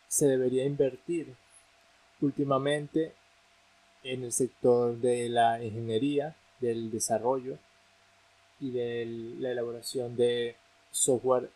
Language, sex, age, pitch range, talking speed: Spanish, male, 20-39, 120-145 Hz, 95 wpm